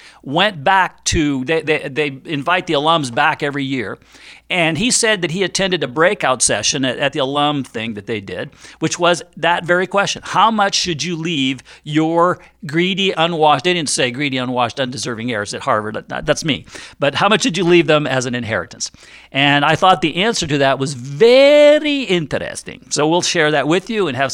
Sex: male